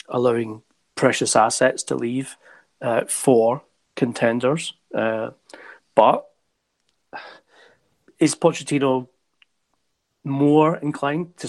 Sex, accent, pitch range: male, British, 120-145 Hz